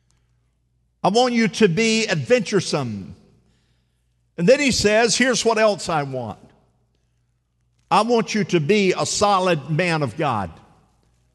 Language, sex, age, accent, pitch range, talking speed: English, male, 50-69, American, 145-215 Hz, 130 wpm